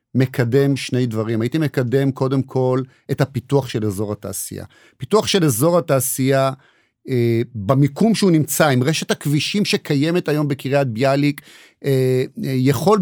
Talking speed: 130 wpm